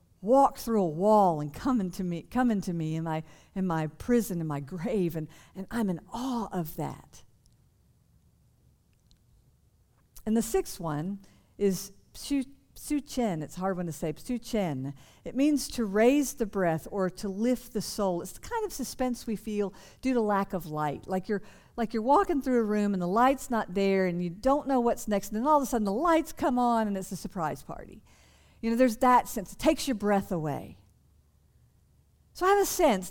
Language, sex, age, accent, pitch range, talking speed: English, female, 50-69, American, 185-255 Hz, 205 wpm